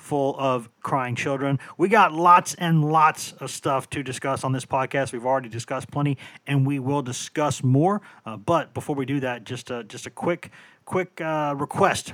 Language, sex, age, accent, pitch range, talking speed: English, male, 30-49, American, 130-170 Hz, 190 wpm